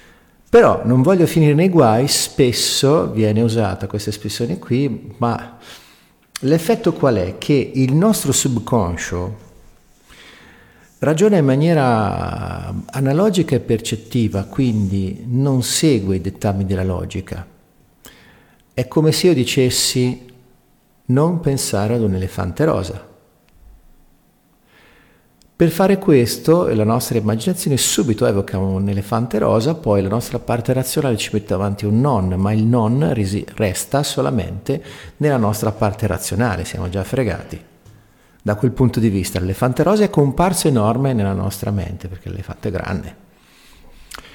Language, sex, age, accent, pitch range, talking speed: Italian, male, 50-69, native, 100-140 Hz, 130 wpm